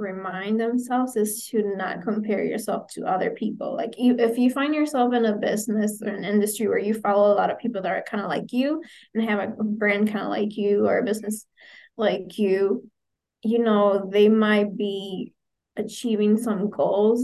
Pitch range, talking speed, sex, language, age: 210-240 Hz, 190 wpm, female, English, 20-39